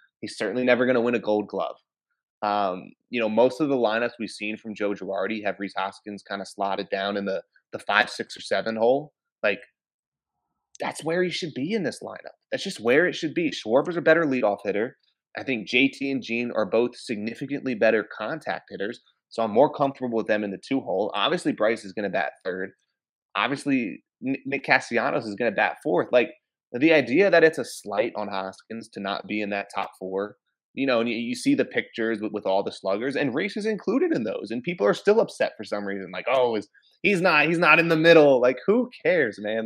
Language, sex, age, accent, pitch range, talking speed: English, male, 20-39, American, 105-160 Hz, 225 wpm